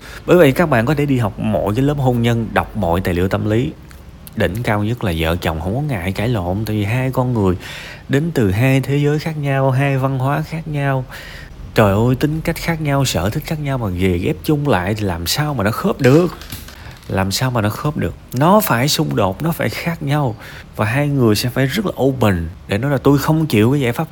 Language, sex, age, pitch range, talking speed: Vietnamese, male, 20-39, 95-135 Hz, 250 wpm